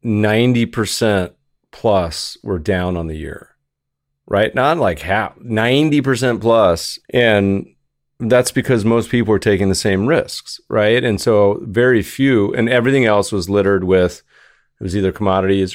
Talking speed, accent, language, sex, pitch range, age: 140 wpm, American, English, male, 90-105 Hz, 30-49